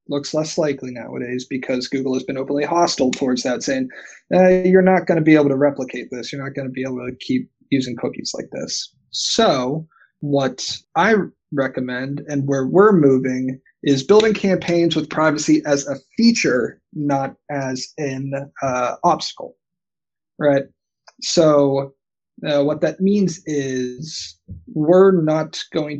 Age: 30-49